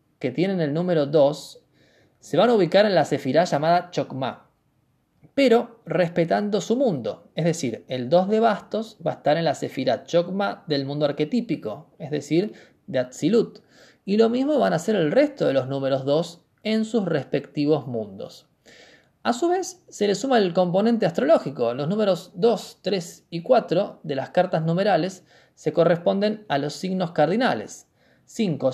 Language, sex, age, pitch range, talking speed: Spanish, male, 20-39, 150-210 Hz, 165 wpm